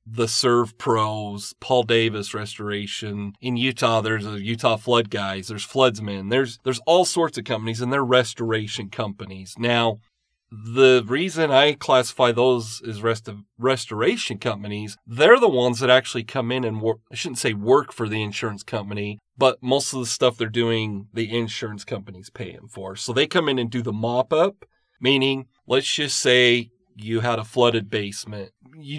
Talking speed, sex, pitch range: 175 wpm, male, 105-130 Hz